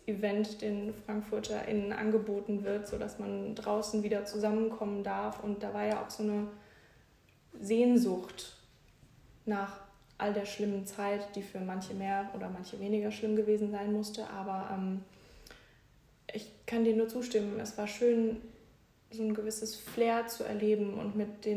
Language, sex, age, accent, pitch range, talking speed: German, female, 20-39, German, 205-225 Hz, 145 wpm